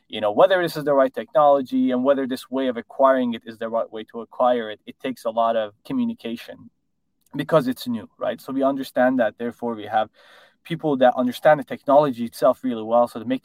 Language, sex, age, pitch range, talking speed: English, male, 20-39, 115-180 Hz, 225 wpm